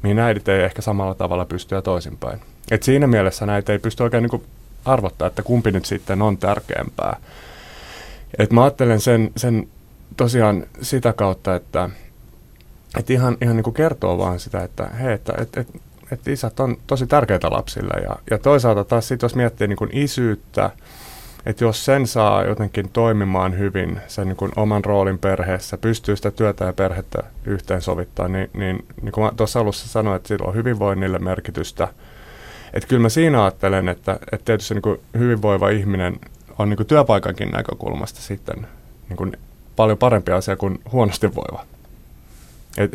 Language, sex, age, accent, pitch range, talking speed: Finnish, male, 30-49, native, 95-115 Hz, 165 wpm